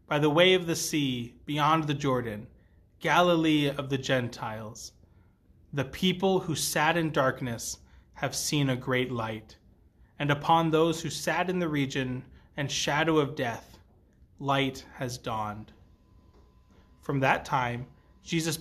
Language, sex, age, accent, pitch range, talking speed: English, male, 30-49, American, 125-160 Hz, 140 wpm